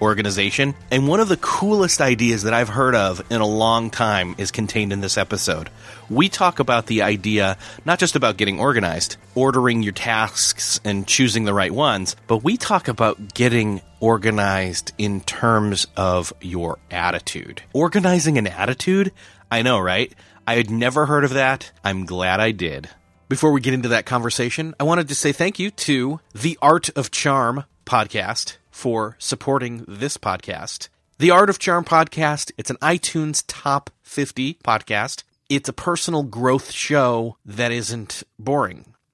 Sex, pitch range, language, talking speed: male, 105-145 Hz, English, 165 wpm